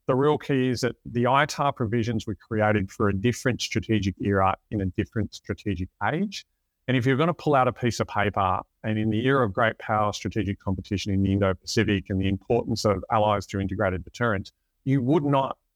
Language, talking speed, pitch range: English, 200 wpm, 105-135 Hz